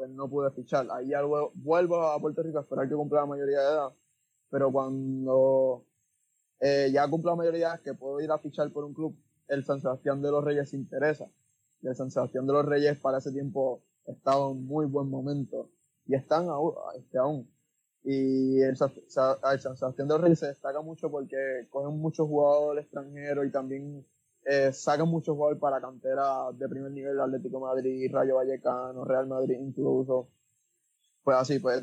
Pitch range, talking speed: 135-150 Hz, 180 wpm